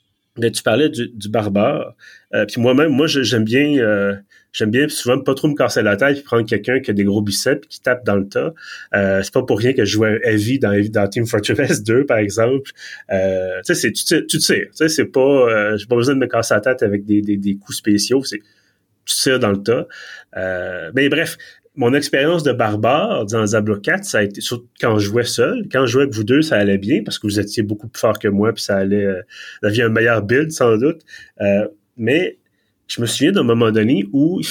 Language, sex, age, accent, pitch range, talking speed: French, male, 30-49, Canadian, 105-140 Hz, 245 wpm